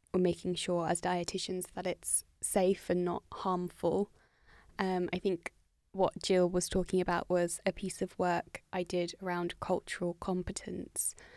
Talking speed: 155 wpm